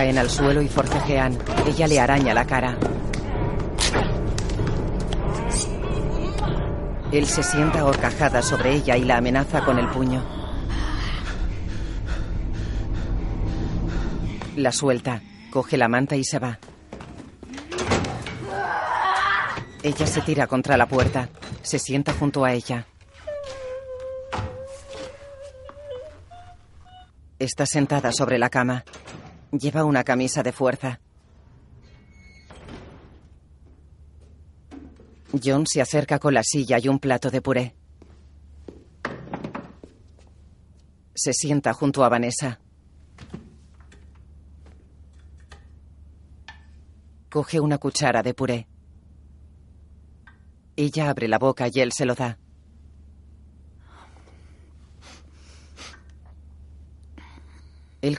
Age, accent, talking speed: 40-59, Spanish, 85 wpm